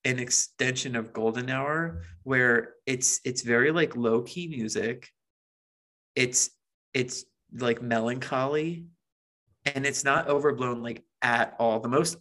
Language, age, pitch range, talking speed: English, 30-49, 115-140 Hz, 130 wpm